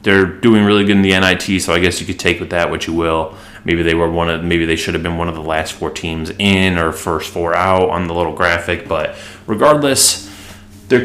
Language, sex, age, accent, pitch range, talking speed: English, male, 20-39, American, 85-100 Hz, 250 wpm